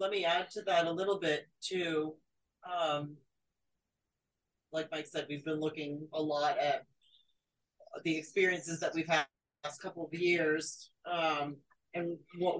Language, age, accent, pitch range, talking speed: English, 40-59, American, 160-190 Hz, 150 wpm